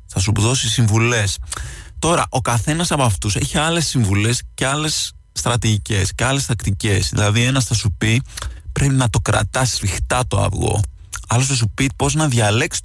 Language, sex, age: Greek, male, 20-39